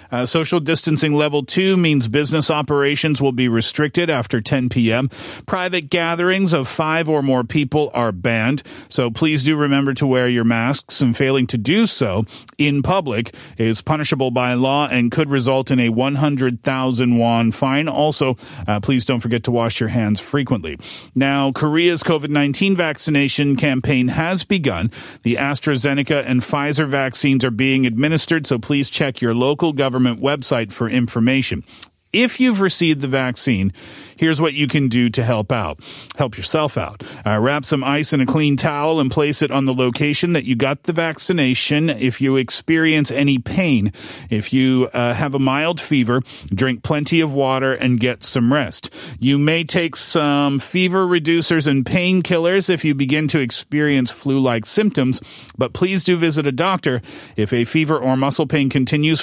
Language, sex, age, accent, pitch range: Korean, male, 40-59, American, 125-155 Hz